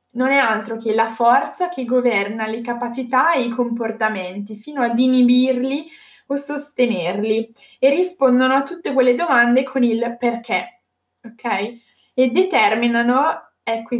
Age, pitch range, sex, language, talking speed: 10-29, 220-260 Hz, female, Italian, 135 wpm